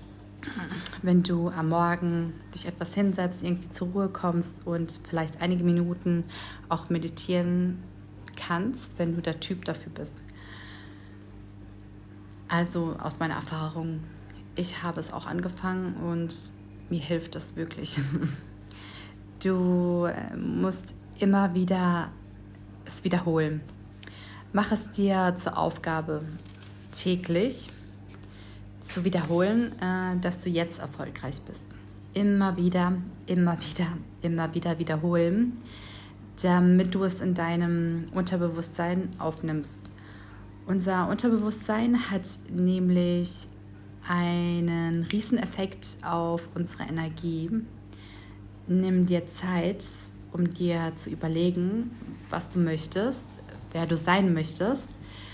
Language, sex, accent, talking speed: German, female, German, 105 wpm